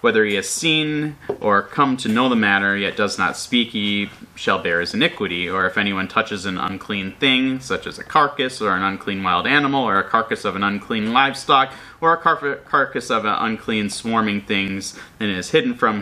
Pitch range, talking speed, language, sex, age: 100-130 Hz, 200 wpm, English, male, 30-49